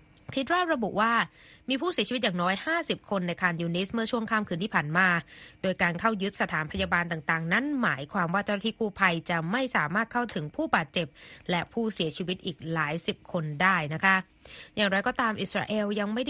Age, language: 20-39, Thai